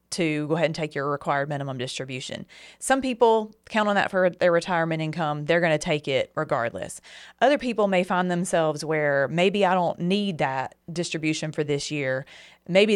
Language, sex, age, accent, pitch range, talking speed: English, female, 30-49, American, 150-180 Hz, 180 wpm